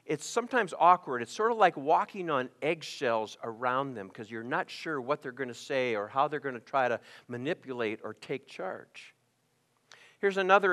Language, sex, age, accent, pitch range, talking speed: English, male, 60-79, American, 150-215 Hz, 190 wpm